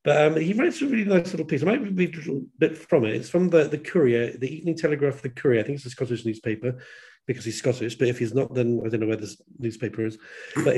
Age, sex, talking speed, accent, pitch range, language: 40-59, male, 275 wpm, British, 120-150 Hz, English